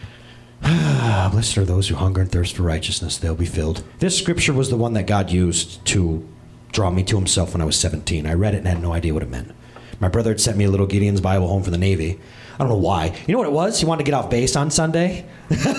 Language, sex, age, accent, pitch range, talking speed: English, male, 30-49, American, 100-170 Hz, 260 wpm